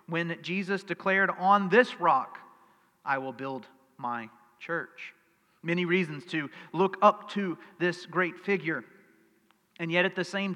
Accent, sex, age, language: American, male, 40-59, English